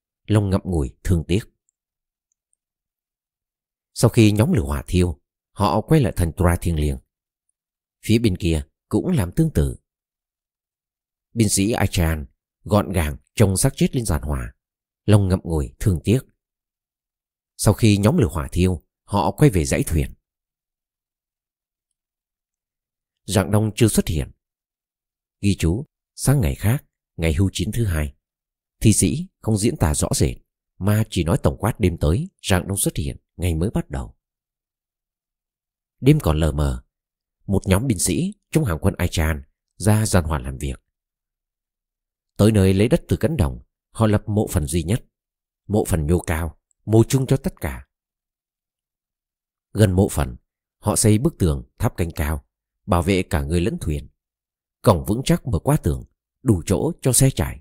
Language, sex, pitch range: Vietnamese, male, 80-110 Hz